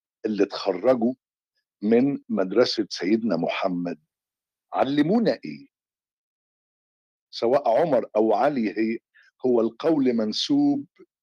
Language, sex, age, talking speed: Arabic, male, 50-69, 80 wpm